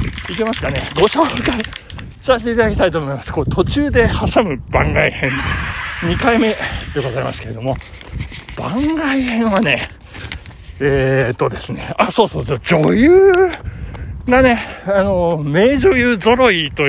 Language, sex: Japanese, male